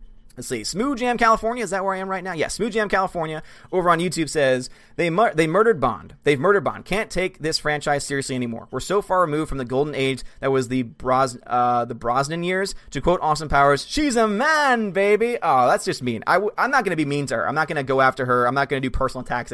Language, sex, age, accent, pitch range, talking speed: English, male, 30-49, American, 130-180 Hz, 265 wpm